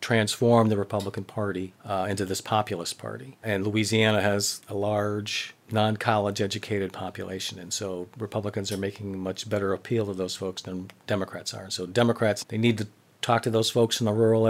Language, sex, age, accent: English, male, 40-59, American